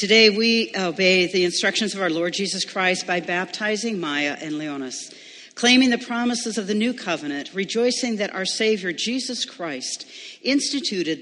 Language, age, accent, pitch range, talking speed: English, 60-79, American, 170-230 Hz, 155 wpm